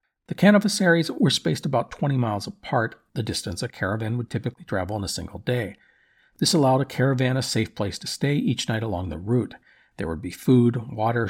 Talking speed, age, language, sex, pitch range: 200 wpm, 50-69, English, male, 105-140 Hz